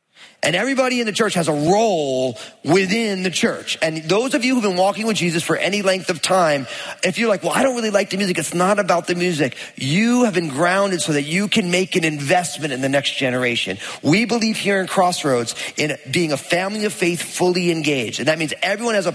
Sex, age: male, 40-59